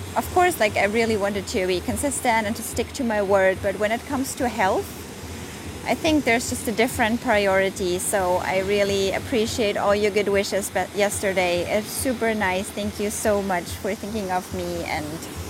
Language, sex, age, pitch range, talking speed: English, female, 20-39, 185-225 Hz, 195 wpm